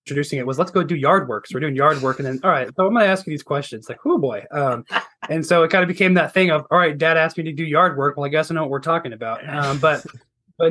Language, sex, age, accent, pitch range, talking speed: English, male, 20-39, American, 135-165 Hz, 325 wpm